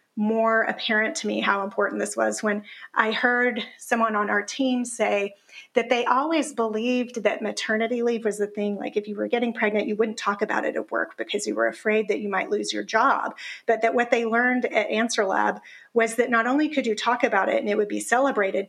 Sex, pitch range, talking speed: female, 210-245 Hz, 230 wpm